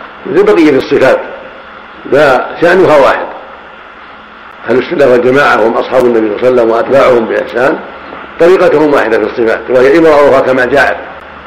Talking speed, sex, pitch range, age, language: 130 wpm, male, 125-165 Hz, 60-79, Arabic